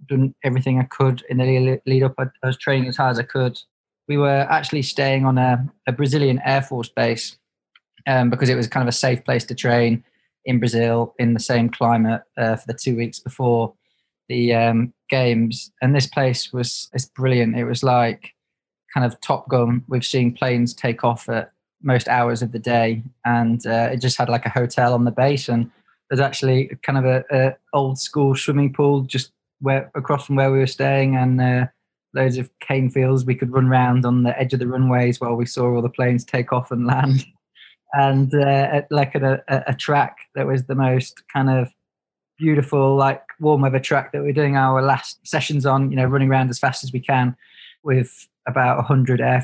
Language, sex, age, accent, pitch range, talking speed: English, male, 20-39, British, 120-140 Hz, 210 wpm